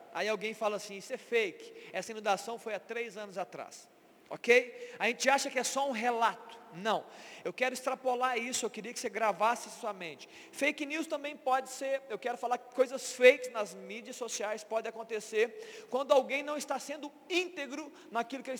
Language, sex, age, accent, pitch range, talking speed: Portuguese, male, 40-59, Brazilian, 215-260 Hz, 195 wpm